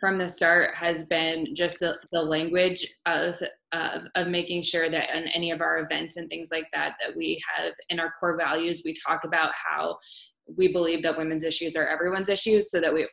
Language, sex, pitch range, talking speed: English, female, 160-180 Hz, 210 wpm